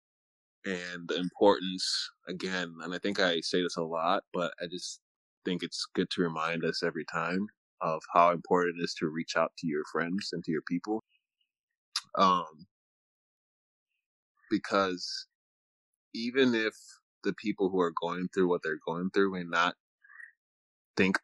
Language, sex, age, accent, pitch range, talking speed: English, male, 20-39, American, 90-105 Hz, 155 wpm